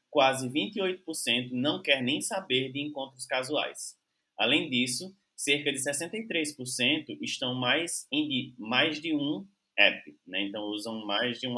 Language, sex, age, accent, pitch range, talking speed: Portuguese, male, 20-39, Brazilian, 110-160 Hz, 135 wpm